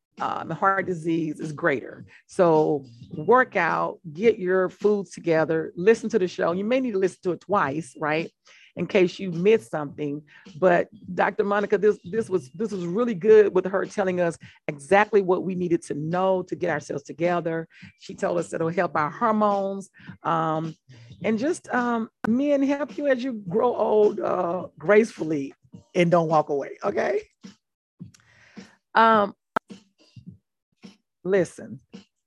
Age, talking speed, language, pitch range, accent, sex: 40-59, 155 wpm, English, 165-210 Hz, American, female